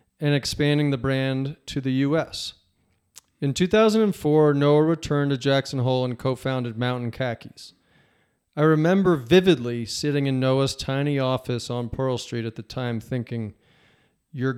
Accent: American